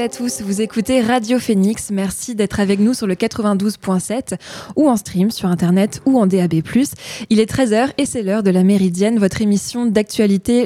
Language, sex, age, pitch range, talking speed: French, female, 20-39, 190-225 Hz, 185 wpm